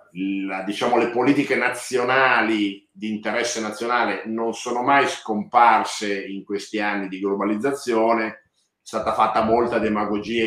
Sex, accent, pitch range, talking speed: male, native, 90-110 Hz, 125 wpm